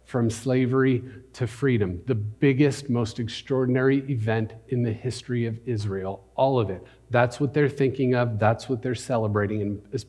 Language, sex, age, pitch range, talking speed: English, male, 40-59, 100-135 Hz, 165 wpm